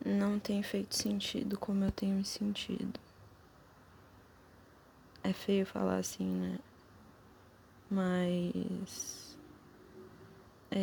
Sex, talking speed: female, 90 wpm